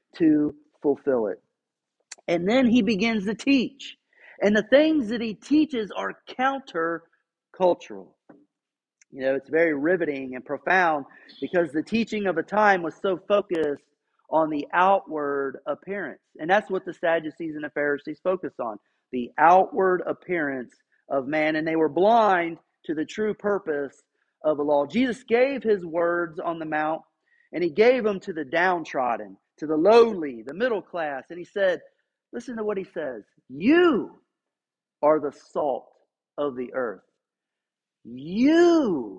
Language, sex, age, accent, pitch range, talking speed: English, male, 40-59, American, 155-230 Hz, 150 wpm